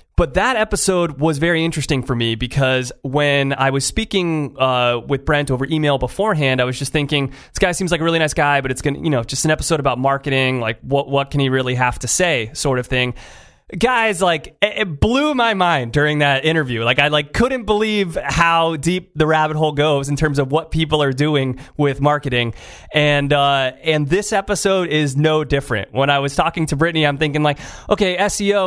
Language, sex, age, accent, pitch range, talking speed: English, male, 30-49, American, 130-165 Hz, 210 wpm